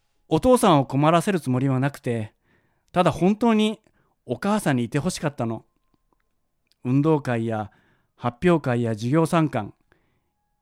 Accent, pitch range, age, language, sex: native, 120-155 Hz, 40-59, Japanese, male